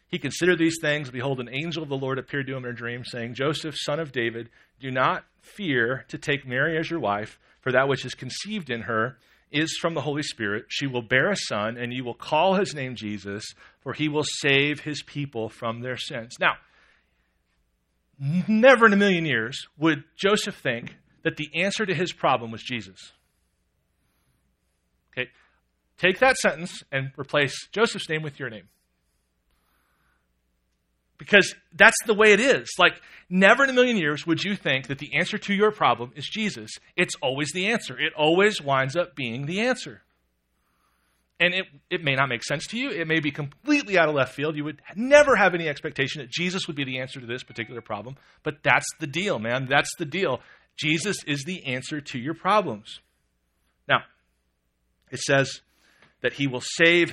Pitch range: 115-165 Hz